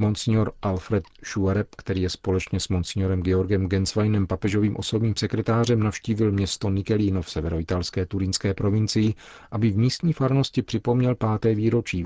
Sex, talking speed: male, 140 wpm